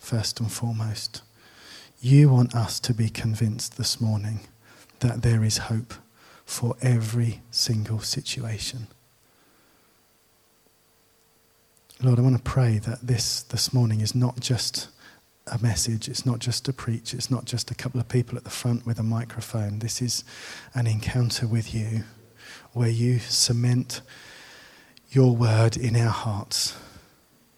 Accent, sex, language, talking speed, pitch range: British, male, English, 140 wpm, 110-125 Hz